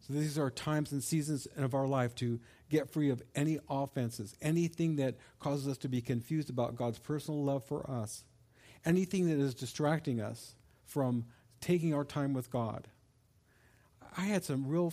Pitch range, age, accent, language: 120-155 Hz, 50-69, American, English